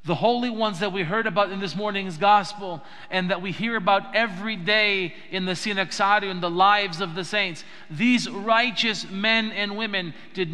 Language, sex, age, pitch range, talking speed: English, male, 50-69, 170-225 Hz, 190 wpm